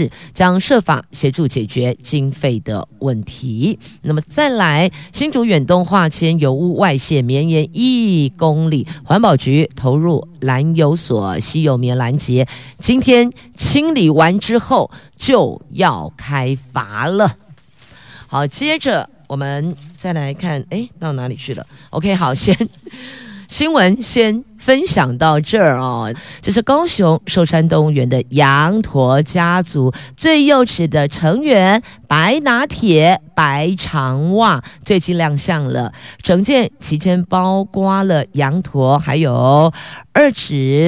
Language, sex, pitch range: Chinese, female, 140-195 Hz